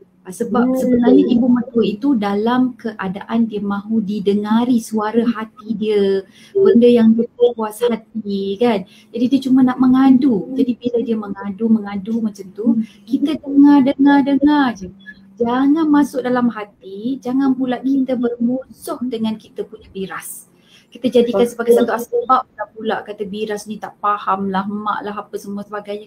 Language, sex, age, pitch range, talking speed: Malay, female, 20-39, 210-260 Hz, 140 wpm